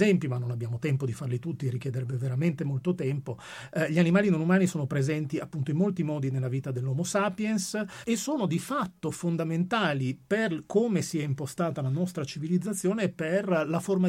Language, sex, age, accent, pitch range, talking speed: Italian, male, 40-59, native, 135-175 Hz, 185 wpm